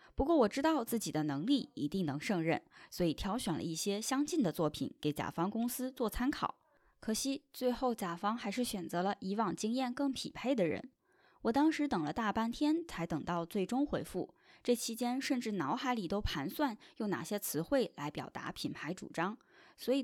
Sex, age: female, 20-39